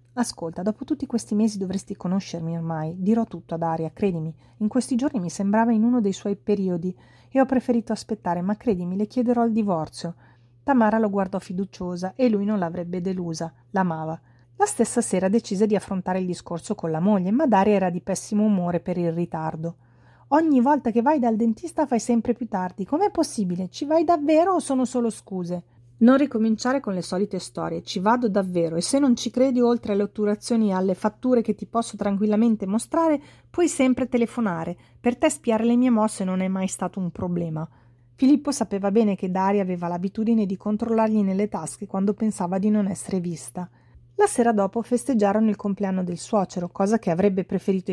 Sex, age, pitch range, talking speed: female, 30-49, 180-230 Hz, 190 wpm